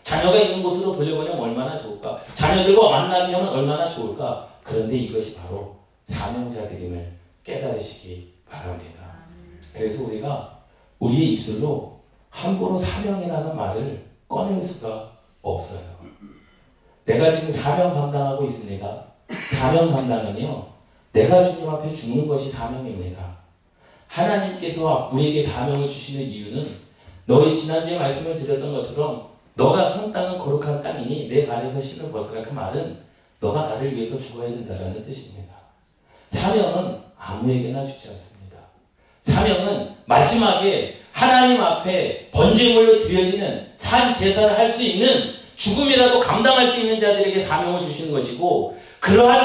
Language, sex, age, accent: Korean, male, 40-59, native